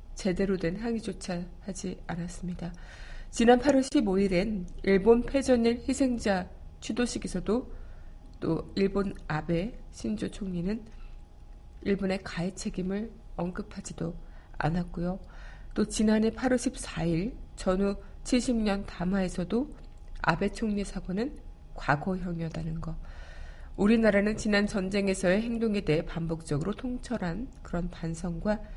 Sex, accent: female, native